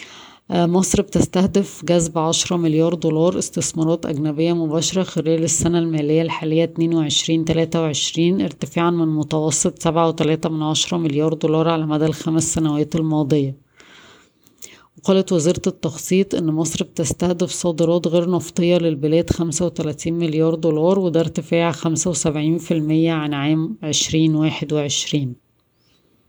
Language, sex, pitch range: Arabic, female, 155-170 Hz